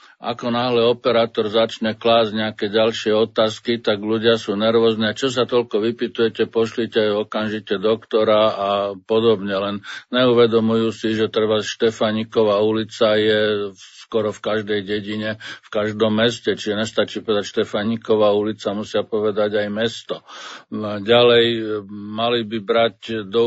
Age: 50-69